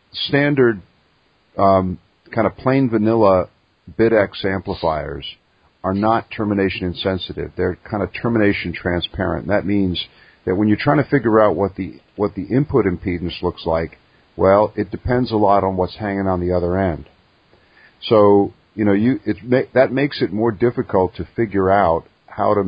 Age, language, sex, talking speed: 50-69, English, male, 165 wpm